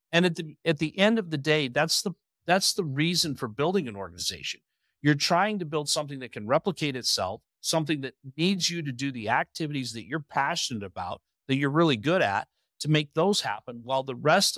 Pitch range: 135-180 Hz